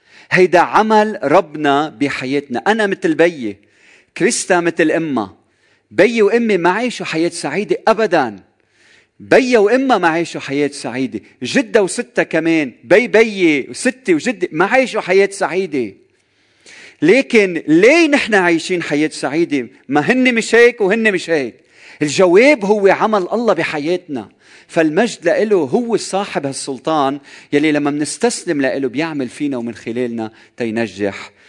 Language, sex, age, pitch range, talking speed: Arabic, male, 40-59, 145-210 Hz, 120 wpm